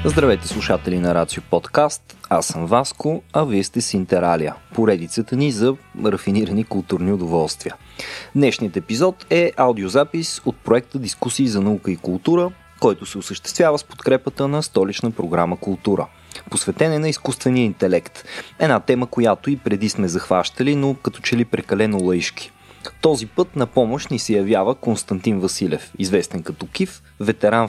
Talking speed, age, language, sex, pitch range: 150 wpm, 20-39, Bulgarian, male, 100-140 Hz